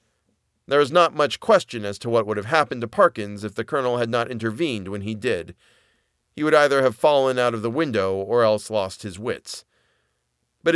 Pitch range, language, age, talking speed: 110-155 Hz, English, 40-59, 205 wpm